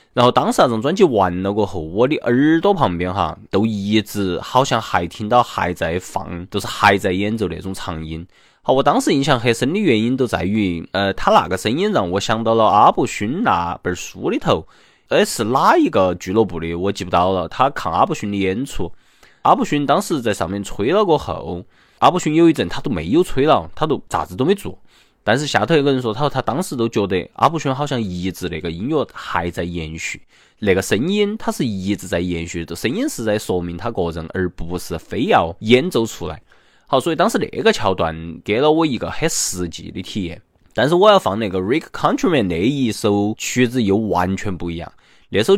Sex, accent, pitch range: male, native, 90-125 Hz